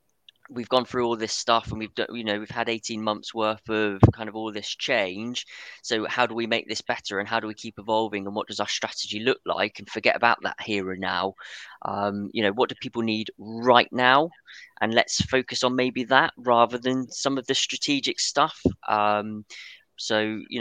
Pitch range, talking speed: 105-125 Hz, 215 wpm